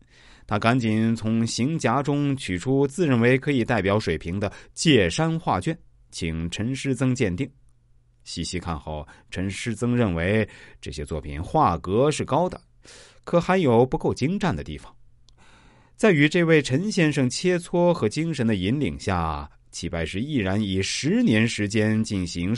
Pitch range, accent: 95-135 Hz, native